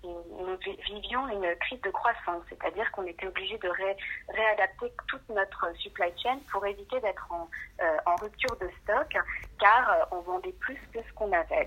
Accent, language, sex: French, French, female